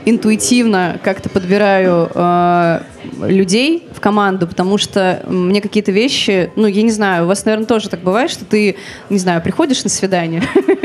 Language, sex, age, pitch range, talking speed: Russian, female, 20-39, 185-220 Hz, 160 wpm